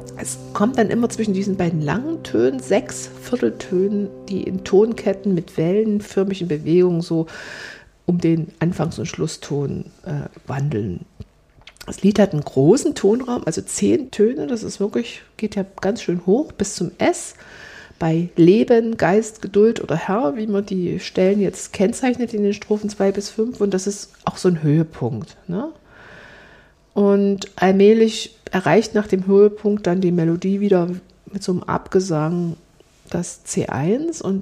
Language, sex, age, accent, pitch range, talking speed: German, female, 50-69, German, 170-210 Hz, 150 wpm